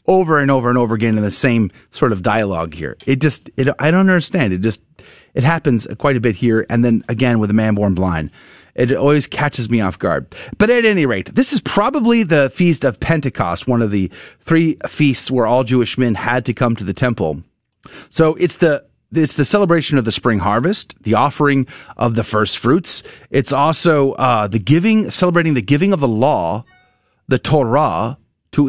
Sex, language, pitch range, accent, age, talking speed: male, English, 120-175 Hz, American, 30-49, 205 wpm